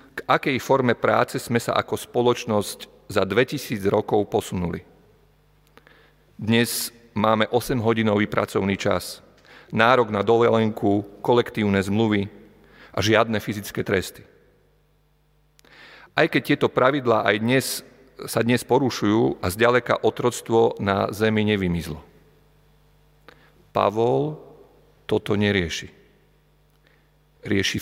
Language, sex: Slovak, male